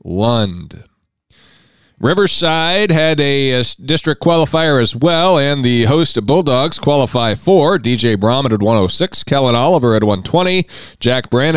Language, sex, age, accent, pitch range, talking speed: English, male, 40-59, American, 120-150 Hz, 135 wpm